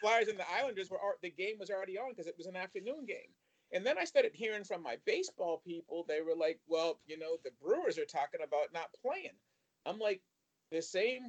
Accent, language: American, English